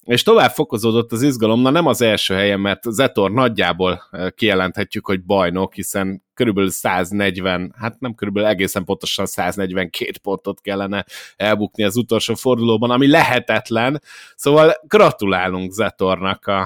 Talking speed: 130 wpm